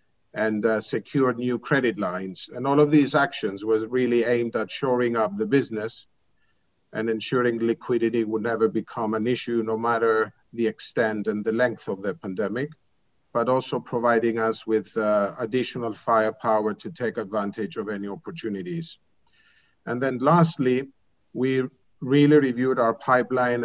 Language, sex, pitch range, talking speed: English, male, 115-135 Hz, 150 wpm